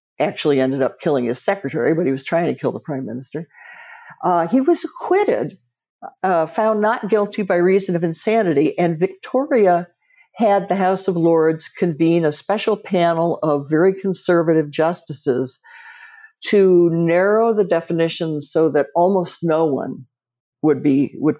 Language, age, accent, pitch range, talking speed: English, 60-79, American, 145-200 Hz, 150 wpm